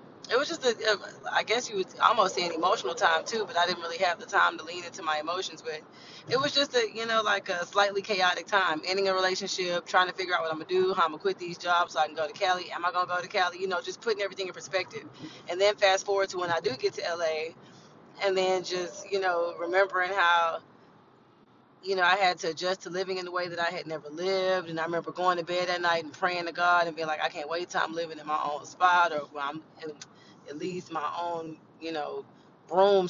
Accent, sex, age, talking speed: American, female, 20-39, 265 wpm